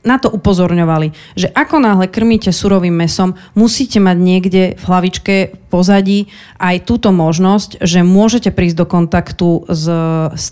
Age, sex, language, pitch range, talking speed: 30-49, female, Slovak, 170-200 Hz, 145 wpm